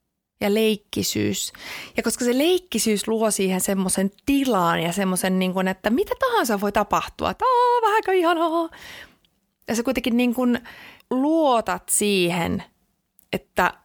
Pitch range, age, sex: 190-295 Hz, 30-49, female